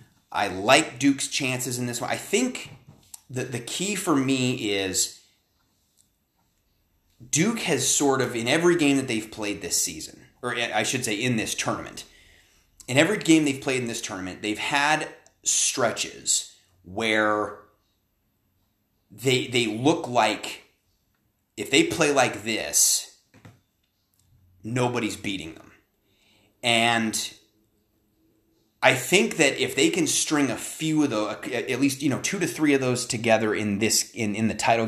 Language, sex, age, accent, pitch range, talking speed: English, male, 30-49, American, 100-125 Hz, 150 wpm